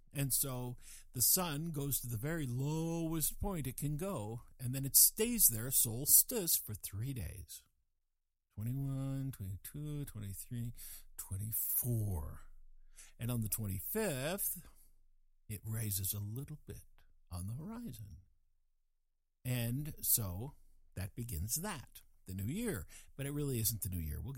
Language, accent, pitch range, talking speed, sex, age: English, American, 95-145 Hz, 135 wpm, male, 50-69